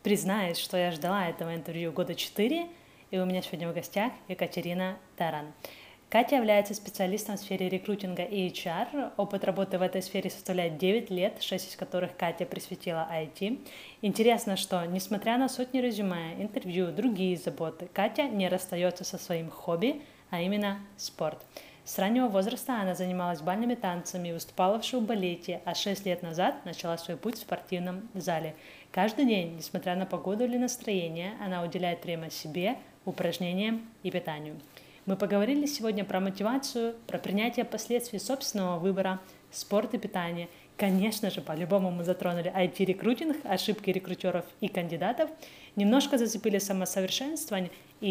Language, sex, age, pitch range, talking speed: Ukrainian, female, 20-39, 175-210 Hz, 150 wpm